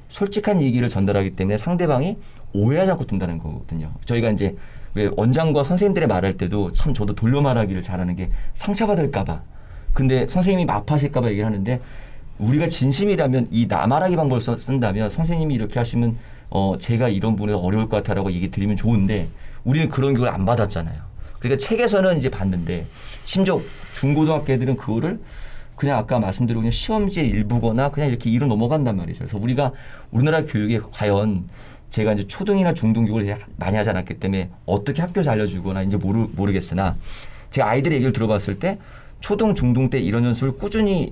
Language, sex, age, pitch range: Korean, male, 40-59, 100-140 Hz